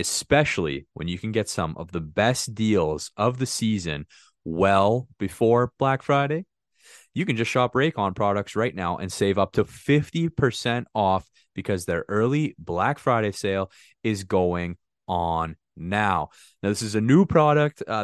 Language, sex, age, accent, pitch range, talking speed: English, male, 20-39, American, 90-115 Hz, 160 wpm